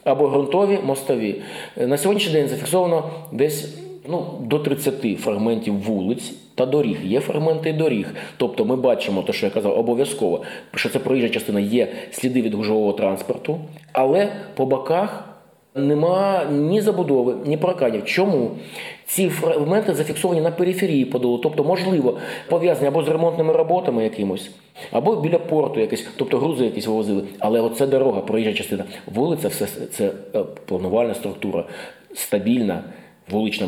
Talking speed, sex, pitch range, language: 140 wpm, male, 110-175 Hz, Ukrainian